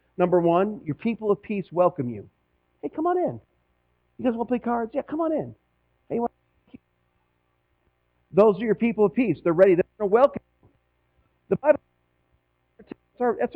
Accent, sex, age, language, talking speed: American, male, 40-59, English, 165 wpm